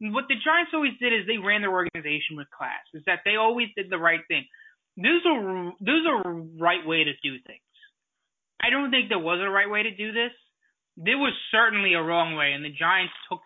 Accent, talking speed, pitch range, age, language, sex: American, 220 wpm, 170-230 Hz, 20-39, English, male